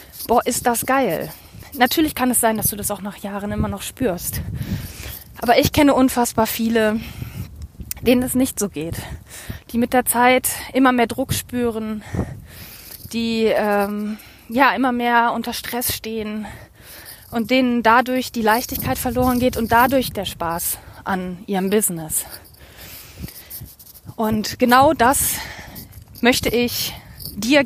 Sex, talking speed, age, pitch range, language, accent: female, 135 wpm, 20-39, 205-250 Hz, German, German